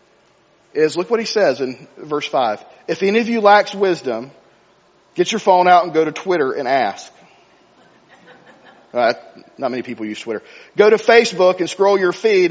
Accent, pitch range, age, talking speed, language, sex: American, 165-205 Hz, 40-59, 175 wpm, English, male